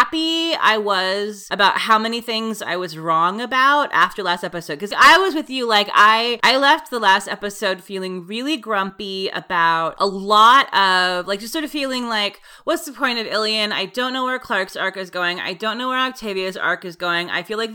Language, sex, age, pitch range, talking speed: English, female, 30-49, 185-235 Hz, 215 wpm